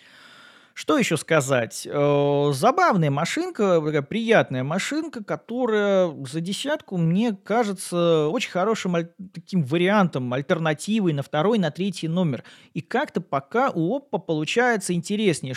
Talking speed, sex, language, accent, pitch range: 110 wpm, male, Russian, native, 145-205 Hz